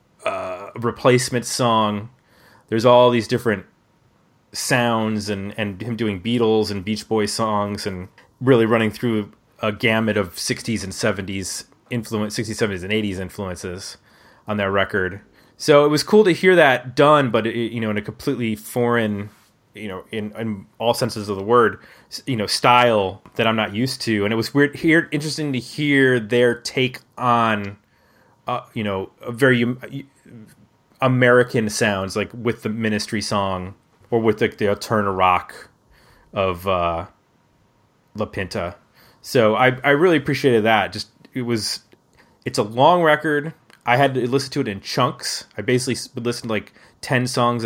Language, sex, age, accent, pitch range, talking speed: English, male, 30-49, American, 105-125 Hz, 160 wpm